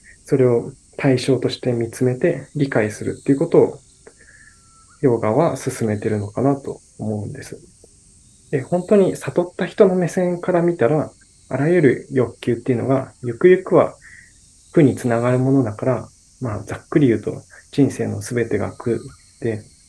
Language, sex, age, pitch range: Japanese, male, 20-39, 115-140 Hz